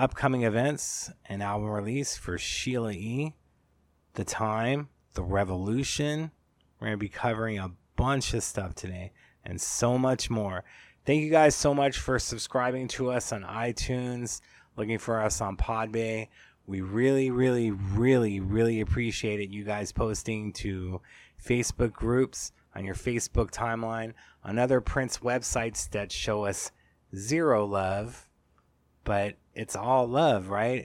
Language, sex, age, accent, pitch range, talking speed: English, male, 20-39, American, 95-120 Hz, 140 wpm